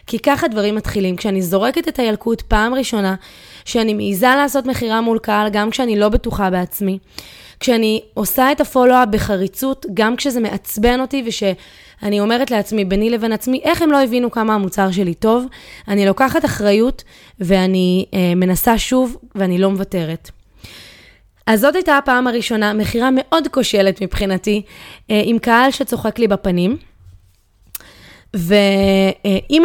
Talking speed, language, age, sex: 140 wpm, Hebrew, 20-39, female